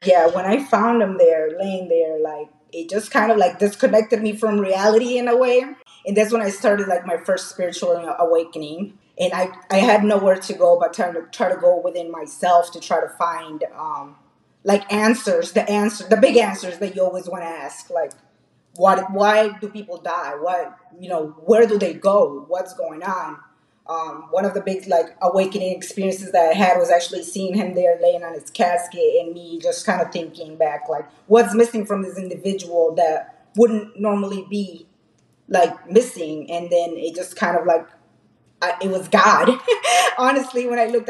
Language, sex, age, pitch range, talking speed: English, female, 20-39, 175-215 Hz, 195 wpm